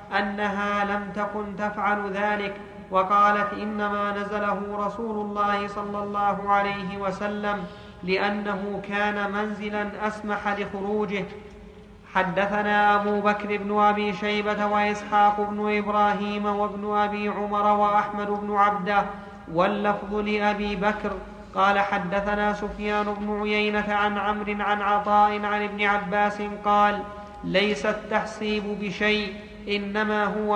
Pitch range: 205-210 Hz